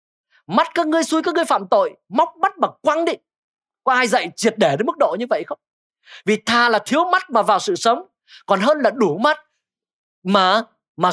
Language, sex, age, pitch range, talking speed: Vietnamese, male, 20-39, 185-290 Hz, 215 wpm